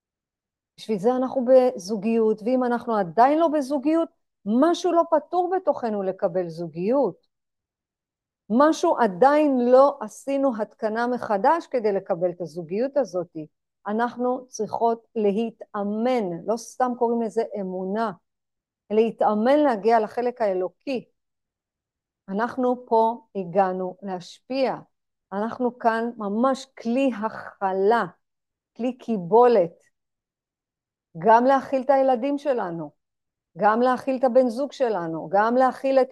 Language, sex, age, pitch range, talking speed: Hebrew, female, 50-69, 190-255 Hz, 105 wpm